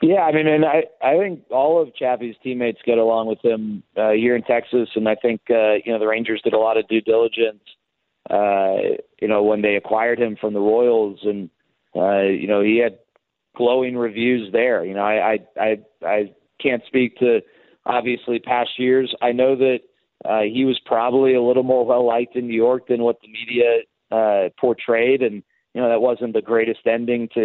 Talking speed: 205 wpm